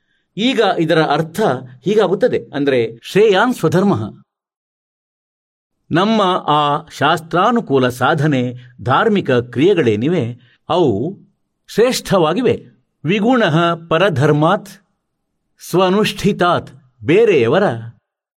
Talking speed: 60 wpm